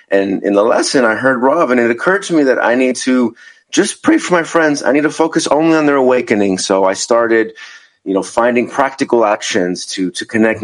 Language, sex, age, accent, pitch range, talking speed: English, male, 30-49, American, 100-130 Hz, 225 wpm